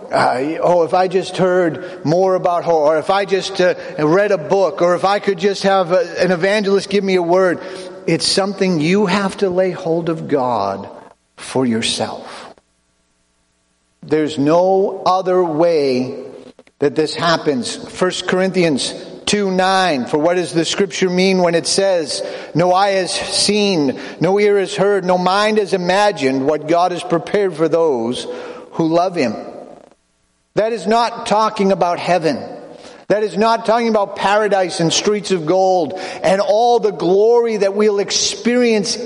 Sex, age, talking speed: male, 50-69, 160 wpm